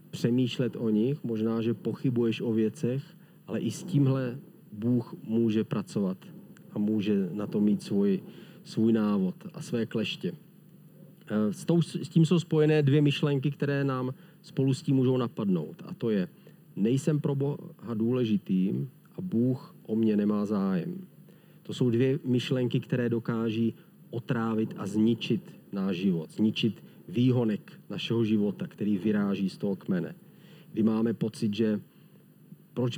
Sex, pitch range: male, 110-175 Hz